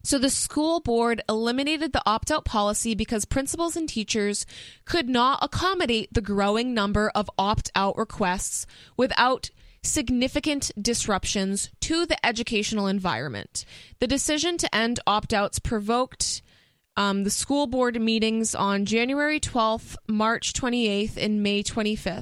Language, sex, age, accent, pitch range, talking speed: English, female, 20-39, American, 205-255 Hz, 125 wpm